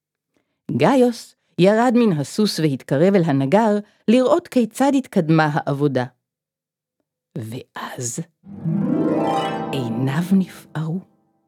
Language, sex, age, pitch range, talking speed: Hebrew, female, 50-69, 155-220 Hz, 75 wpm